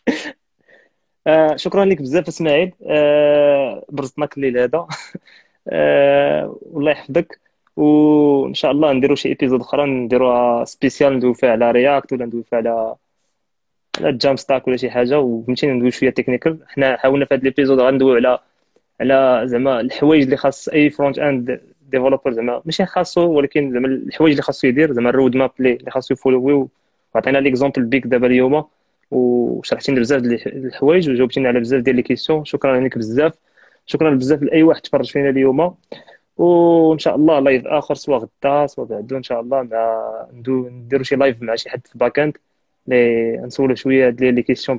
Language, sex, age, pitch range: Arabic, male, 20-39, 125-145 Hz